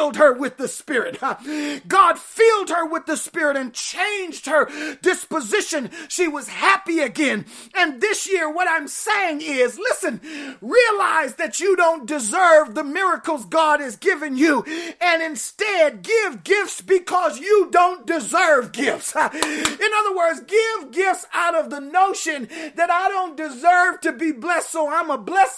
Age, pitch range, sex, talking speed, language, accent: 30-49, 305-375 Hz, male, 155 wpm, English, American